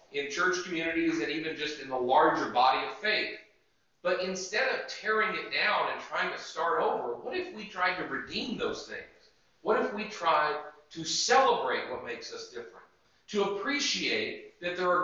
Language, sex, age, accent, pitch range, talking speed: English, male, 40-59, American, 145-210 Hz, 185 wpm